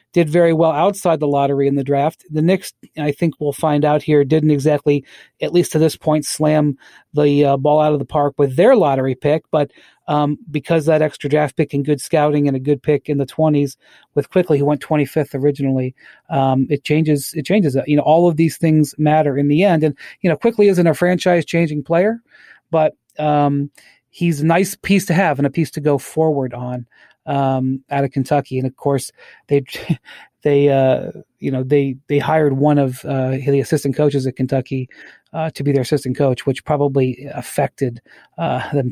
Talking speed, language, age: 205 wpm, English, 40-59